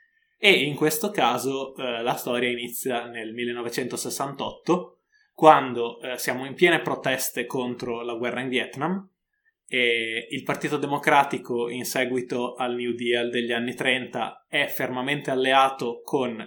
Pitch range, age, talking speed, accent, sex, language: 120-155 Hz, 20-39, 135 wpm, native, male, Italian